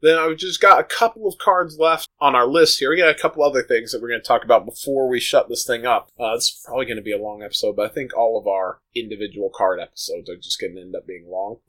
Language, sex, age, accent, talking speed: English, male, 20-39, American, 295 wpm